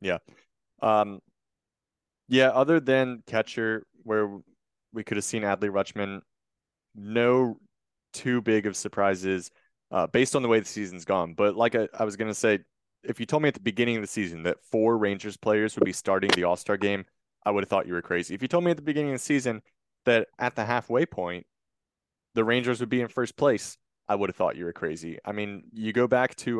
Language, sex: English, male